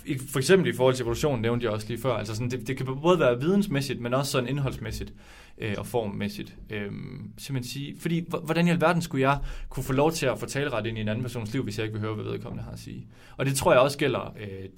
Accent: native